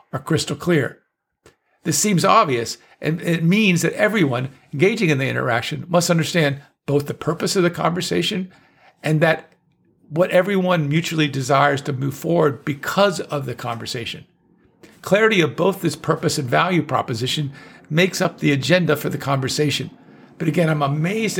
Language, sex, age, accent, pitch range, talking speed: English, male, 50-69, American, 140-175 Hz, 155 wpm